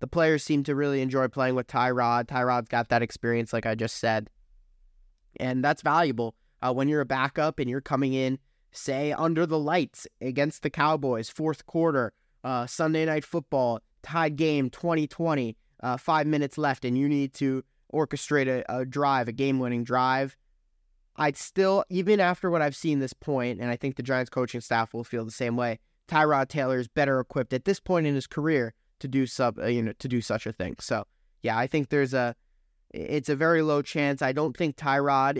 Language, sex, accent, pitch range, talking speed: English, male, American, 120-145 Hz, 200 wpm